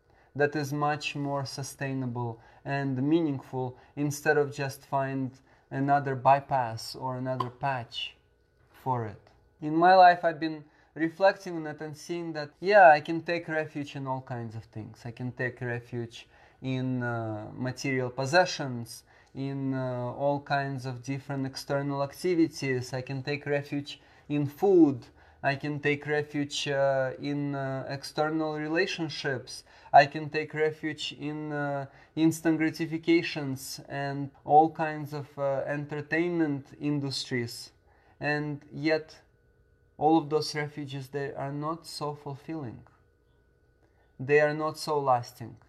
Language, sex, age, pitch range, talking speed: English, male, 20-39, 130-155 Hz, 135 wpm